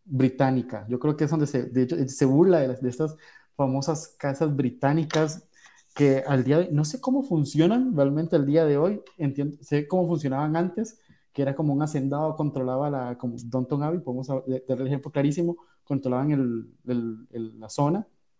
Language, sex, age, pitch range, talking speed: Spanish, male, 20-39, 130-165 Hz, 185 wpm